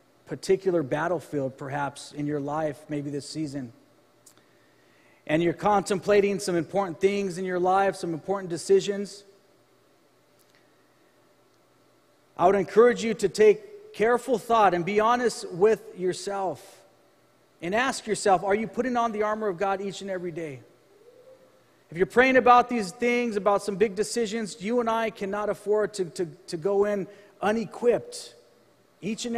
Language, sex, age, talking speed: English, male, 40-59, 145 wpm